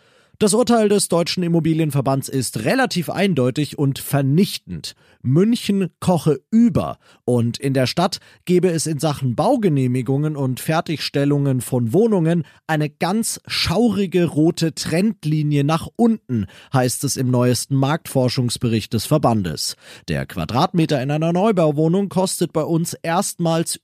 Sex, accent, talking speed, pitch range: male, German, 125 wpm, 125-175 Hz